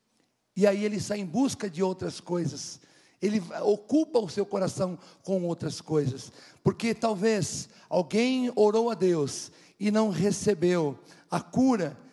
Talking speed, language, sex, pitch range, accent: 140 wpm, Portuguese, male, 160-220 Hz, Brazilian